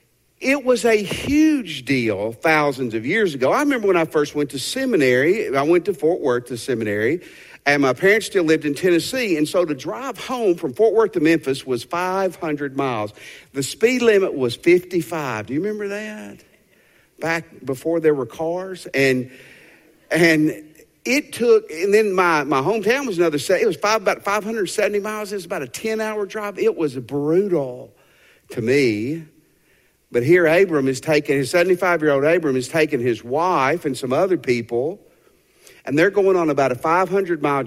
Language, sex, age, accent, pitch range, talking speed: English, male, 50-69, American, 150-220 Hz, 175 wpm